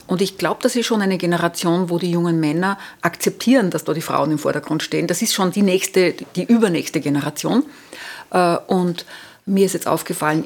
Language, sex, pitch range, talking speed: German, female, 165-195 Hz, 190 wpm